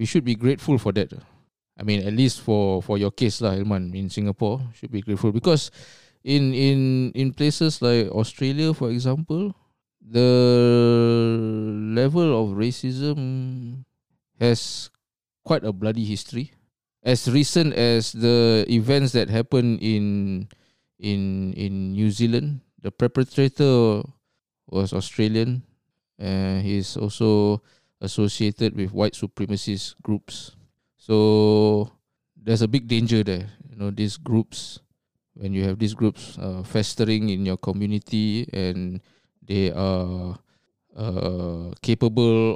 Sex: male